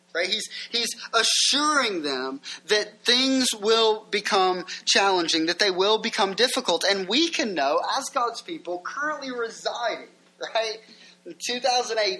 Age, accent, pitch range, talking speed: 20-39, American, 190-255 Hz, 135 wpm